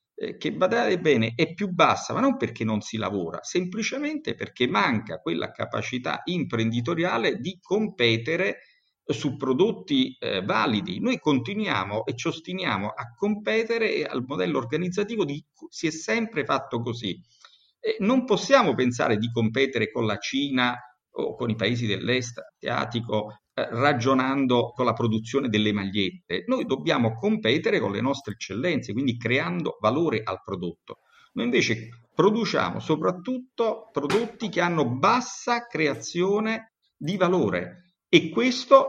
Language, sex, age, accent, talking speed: Italian, male, 50-69, native, 130 wpm